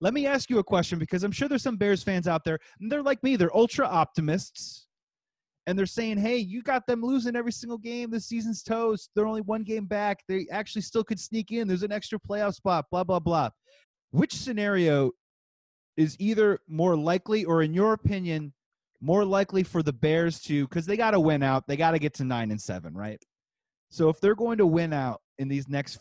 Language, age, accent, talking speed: English, 30-49, American, 215 wpm